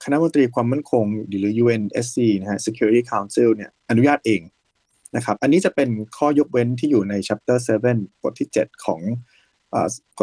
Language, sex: Thai, male